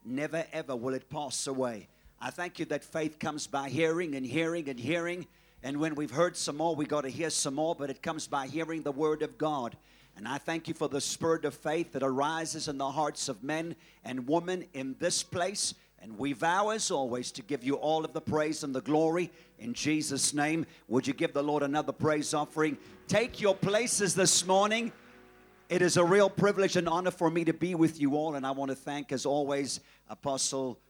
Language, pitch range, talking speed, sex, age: English, 135-165 Hz, 220 wpm, male, 50-69